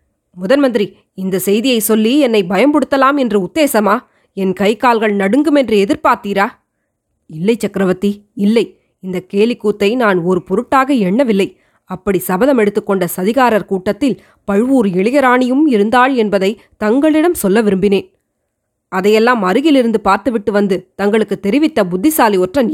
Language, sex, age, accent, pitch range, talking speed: Tamil, female, 20-39, native, 195-245 Hz, 115 wpm